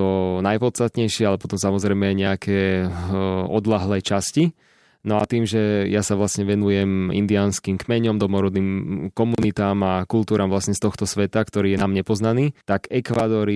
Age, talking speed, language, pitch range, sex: 20-39, 140 wpm, Slovak, 95-110 Hz, male